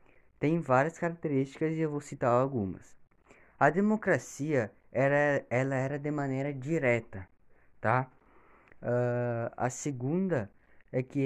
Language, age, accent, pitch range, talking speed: Portuguese, 20-39, Brazilian, 130-165 Hz, 115 wpm